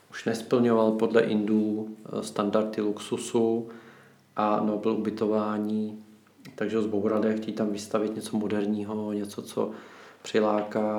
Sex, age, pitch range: male, 40-59, 105-115 Hz